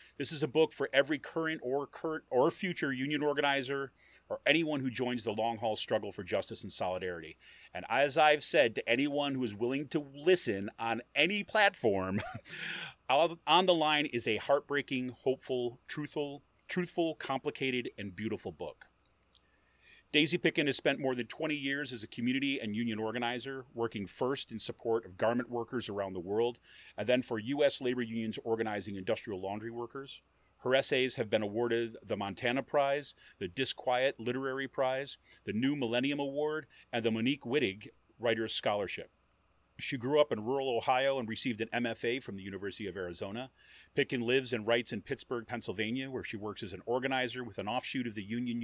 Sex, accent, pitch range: male, American, 115-140 Hz